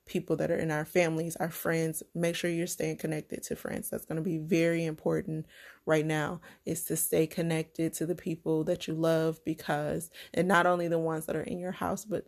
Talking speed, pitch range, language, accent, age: 220 wpm, 160-180 Hz, English, American, 20-39